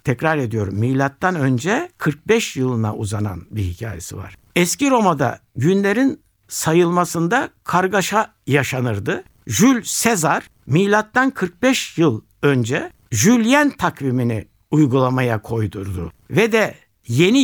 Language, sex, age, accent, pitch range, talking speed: Turkish, male, 60-79, native, 130-200 Hz, 100 wpm